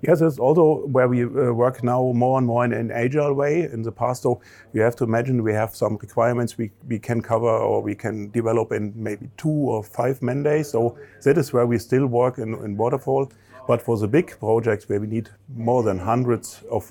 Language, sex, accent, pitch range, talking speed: English, male, German, 110-125 Hz, 225 wpm